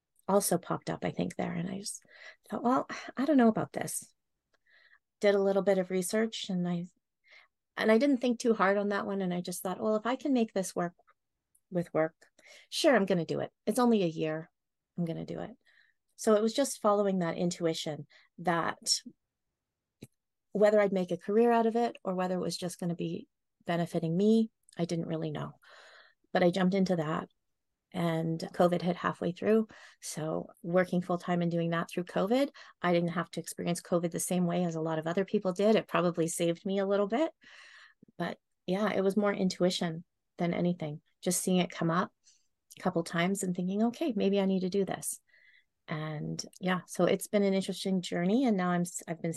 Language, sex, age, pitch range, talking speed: English, female, 30-49, 170-205 Hz, 210 wpm